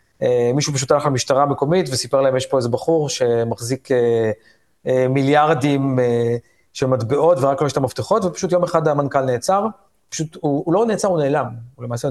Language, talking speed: Hebrew, 190 wpm